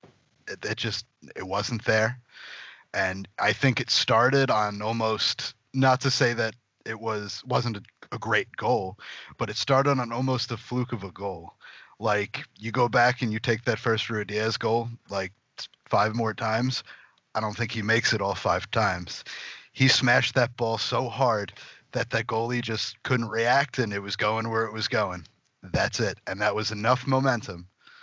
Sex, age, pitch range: male, 30-49, 105-125 Hz